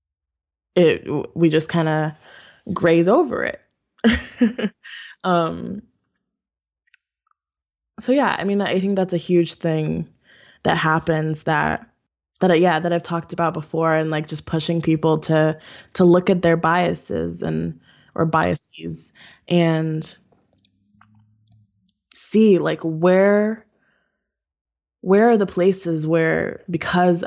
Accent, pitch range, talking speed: American, 155-185 Hz, 120 wpm